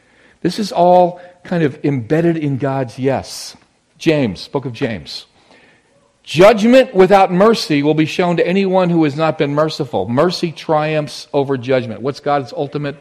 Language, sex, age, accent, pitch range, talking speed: English, male, 50-69, American, 120-165 Hz, 150 wpm